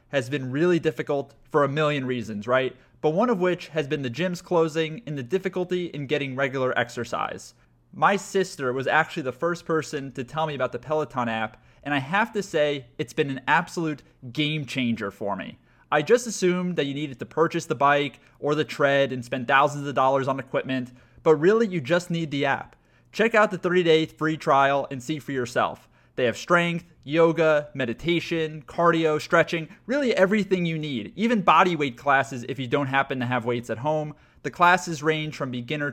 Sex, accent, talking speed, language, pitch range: male, American, 195 wpm, English, 135-170 Hz